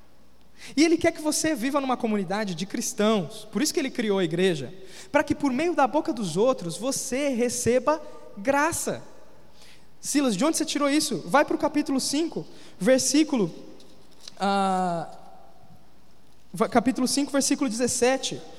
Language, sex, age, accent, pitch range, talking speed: Portuguese, male, 20-39, Brazilian, 220-285 Hz, 145 wpm